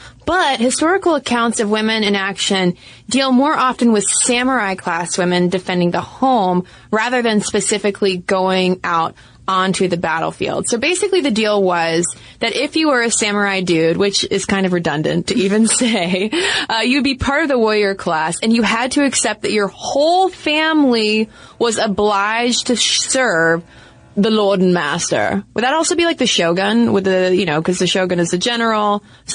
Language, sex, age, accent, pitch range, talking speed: English, female, 20-39, American, 185-235 Hz, 180 wpm